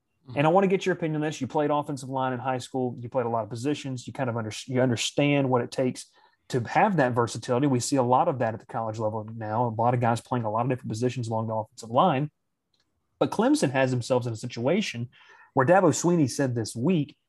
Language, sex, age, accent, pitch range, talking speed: English, male, 30-49, American, 125-165 Hz, 255 wpm